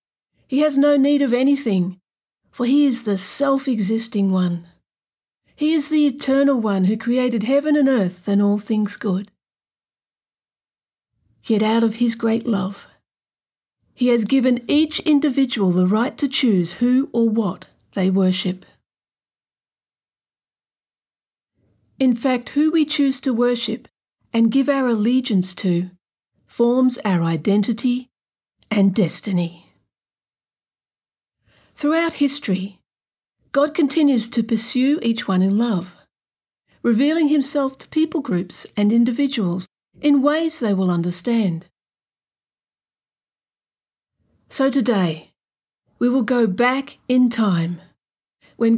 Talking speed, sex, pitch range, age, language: 115 wpm, female, 195-270 Hz, 50-69, English